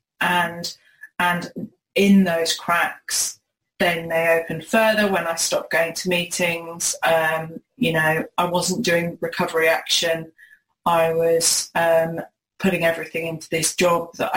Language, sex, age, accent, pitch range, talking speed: English, female, 20-39, British, 170-185 Hz, 135 wpm